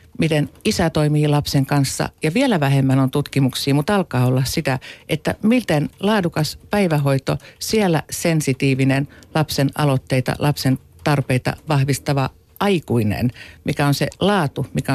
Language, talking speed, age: Finnish, 125 wpm, 50-69